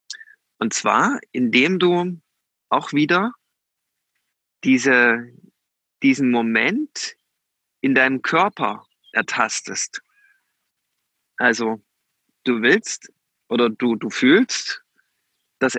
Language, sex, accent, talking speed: German, male, German, 80 wpm